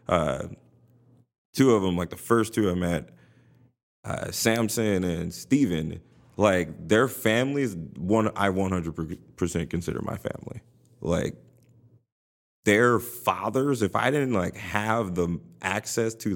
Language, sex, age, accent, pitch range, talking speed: English, male, 30-49, American, 90-115 Hz, 125 wpm